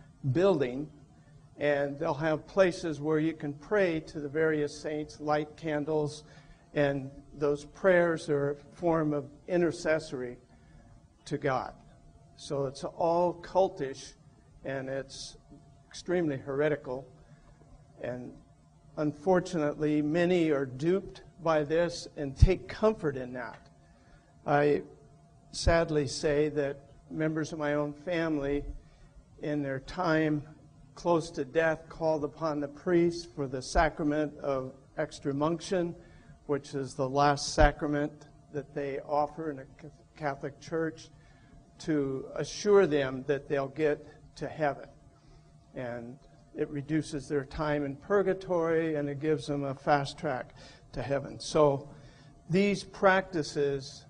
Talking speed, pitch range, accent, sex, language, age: 120 wpm, 140-160 Hz, American, male, English, 60-79